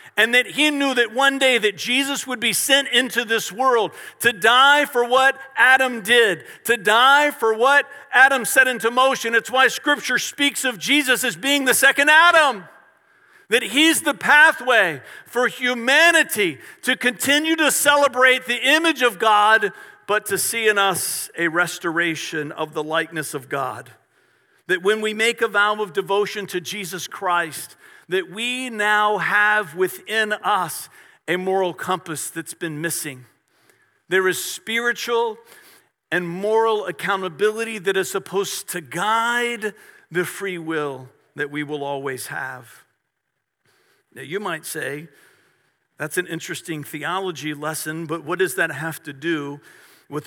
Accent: American